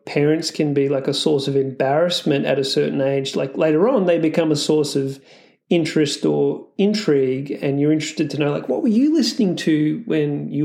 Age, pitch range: 30-49, 140-165 Hz